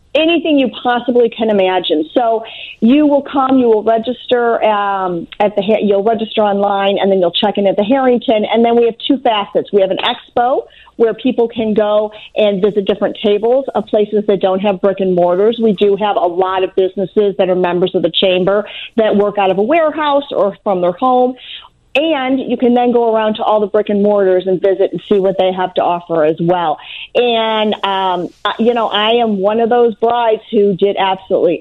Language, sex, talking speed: English, female, 210 wpm